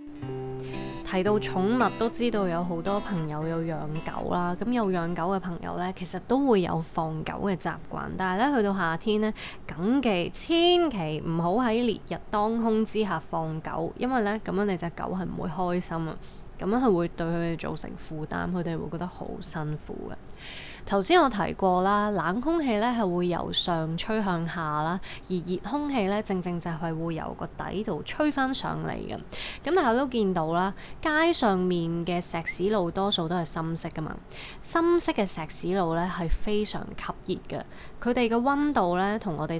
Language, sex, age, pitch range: Chinese, female, 20-39, 165-215 Hz